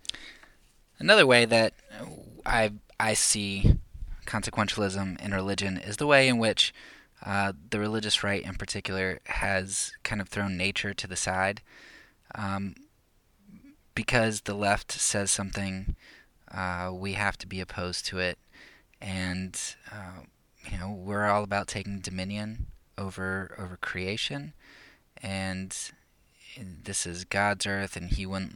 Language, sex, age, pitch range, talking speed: English, male, 20-39, 95-105 Hz, 130 wpm